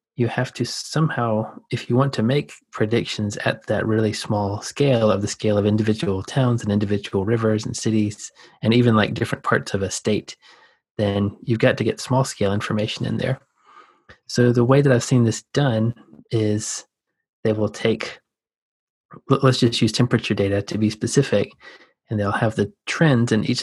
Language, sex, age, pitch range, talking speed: English, male, 30-49, 105-120 Hz, 180 wpm